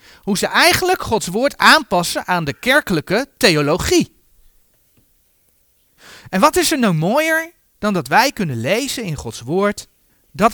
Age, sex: 40-59, male